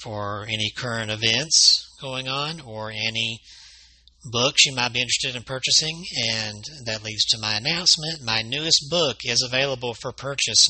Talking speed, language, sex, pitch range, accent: 155 wpm, English, male, 100-125 Hz, American